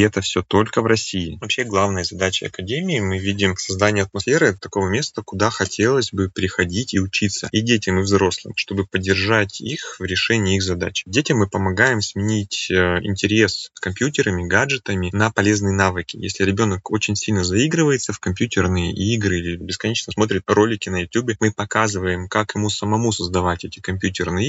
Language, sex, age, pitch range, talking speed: Russian, male, 20-39, 90-105 Hz, 165 wpm